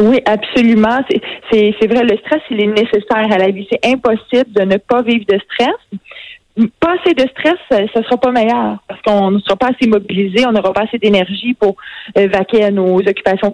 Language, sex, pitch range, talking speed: French, female, 205-255 Hz, 215 wpm